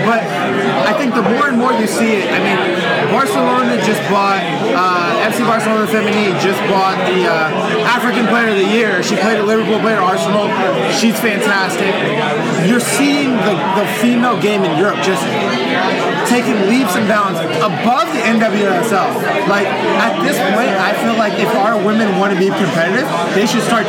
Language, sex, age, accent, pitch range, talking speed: English, male, 20-39, American, 195-225 Hz, 175 wpm